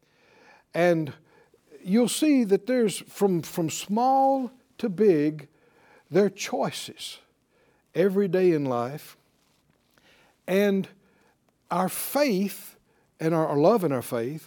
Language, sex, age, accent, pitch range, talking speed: English, male, 60-79, American, 155-230 Hz, 110 wpm